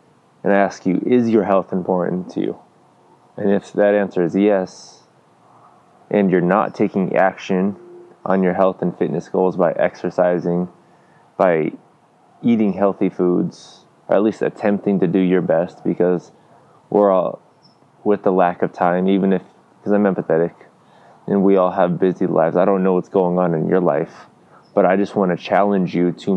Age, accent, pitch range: 20-39, American, 90-105 Hz